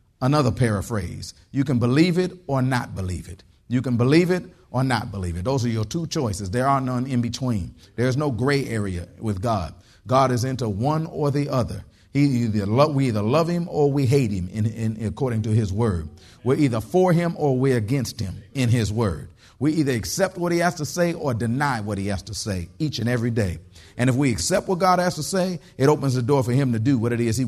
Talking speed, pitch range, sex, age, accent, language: 240 wpm, 110-135 Hz, male, 50-69, American, English